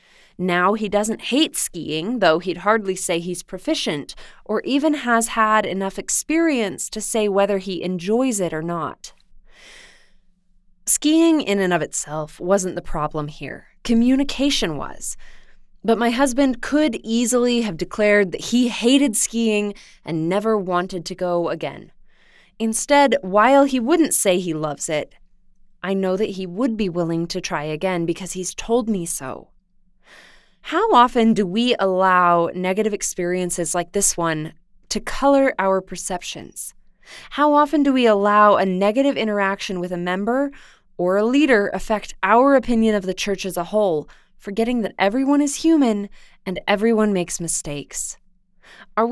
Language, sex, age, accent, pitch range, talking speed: English, female, 20-39, American, 180-230 Hz, 150 wpm